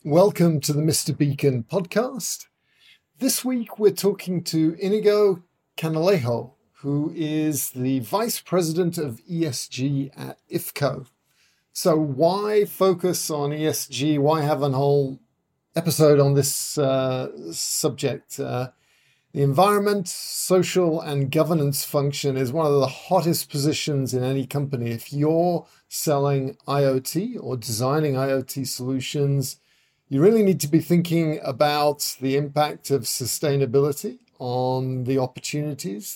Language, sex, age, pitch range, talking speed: English, male, 50-69, 135-165 Hz, 125 wpm